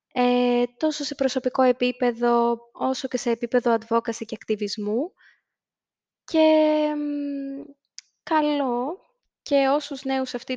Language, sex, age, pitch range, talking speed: Greek, female, 20-39, 225-280 Hz, 100 wpm